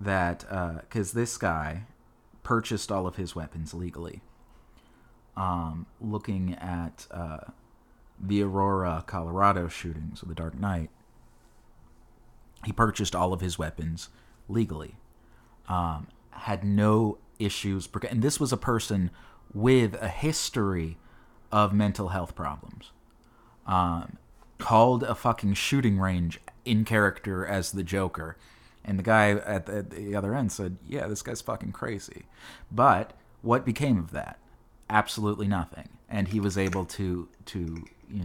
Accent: American